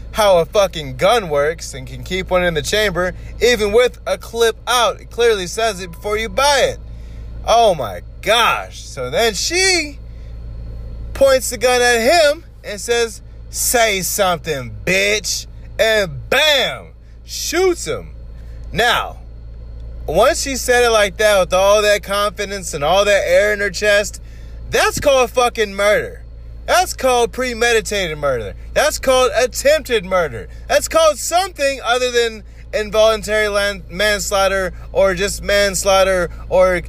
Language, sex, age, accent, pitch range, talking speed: English, male, 20-39, American, 165-250 Hz, 140 wpm